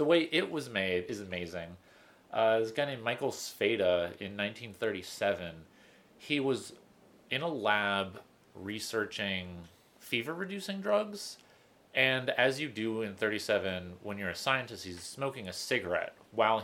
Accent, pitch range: American, 90-120 Hz